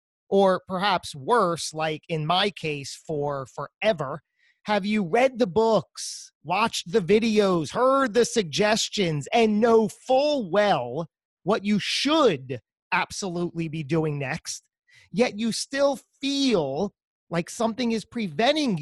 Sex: male